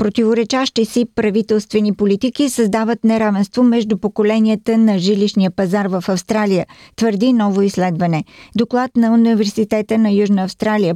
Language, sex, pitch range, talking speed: Bulgarian, female, 175-225 Hz, 120 wpm